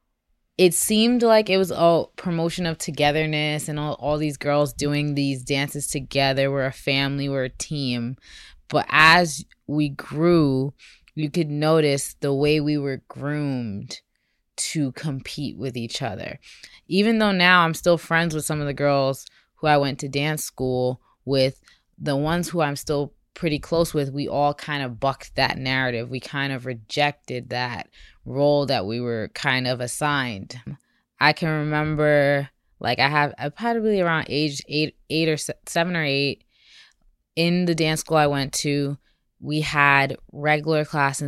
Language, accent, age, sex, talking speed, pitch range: English, American, 20-39, female, 165 wpm, 135-155 Hz